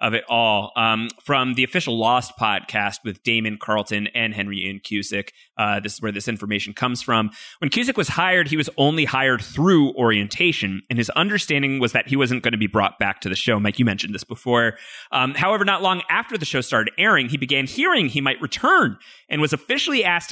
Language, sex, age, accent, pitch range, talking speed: English, male, 30-49, American, 105-150 Hz, 215 wpm